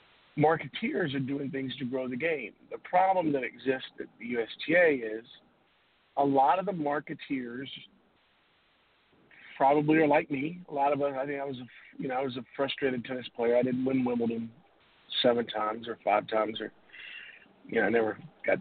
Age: 50-69